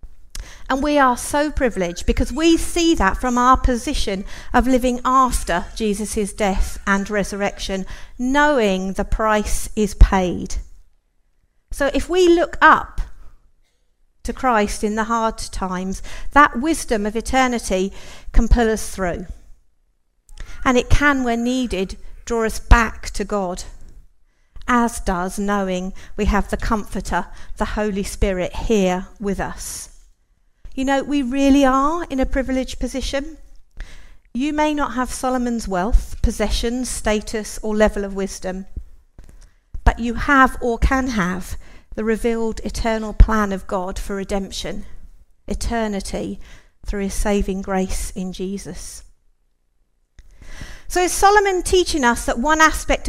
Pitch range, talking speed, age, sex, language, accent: 195-260 Hz, 130 wpm, 50-69, female, English, British